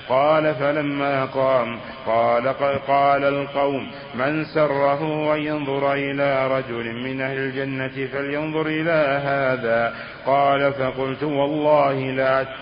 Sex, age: male, 50-69